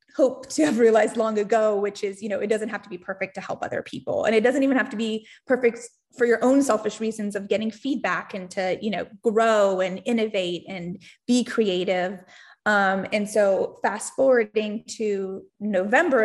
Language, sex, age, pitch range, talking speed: English, female, 20-39, 195-225 Hz, 195 wpm